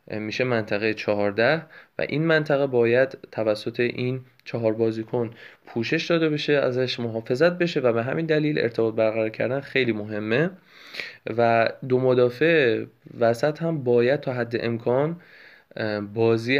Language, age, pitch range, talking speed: Persian, 20-39, 110-135 Hz, 130 wpm